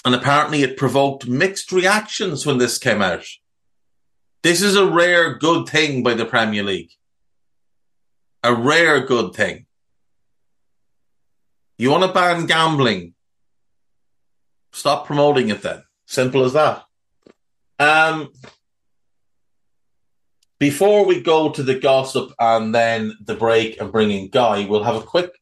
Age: 30-49